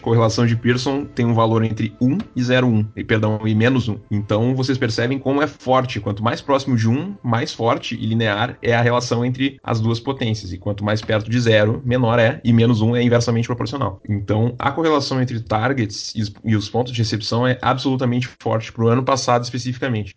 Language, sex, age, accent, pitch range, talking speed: Portuguese, male, 20-39, Brazilian, 110-135 Hz, 205 wpm